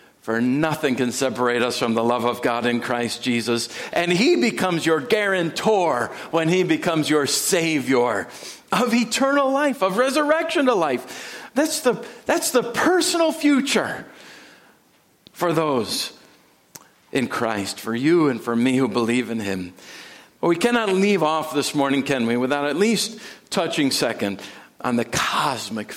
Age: 50-69